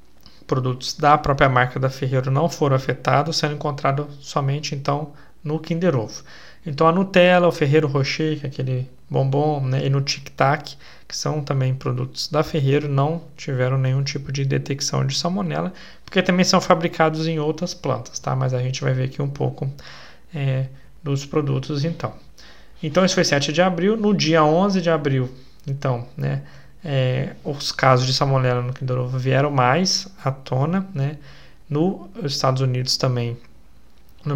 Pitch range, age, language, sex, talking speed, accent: 130-155 Hz, 20-39, Portuguese, male, 160 wpm, Brazilian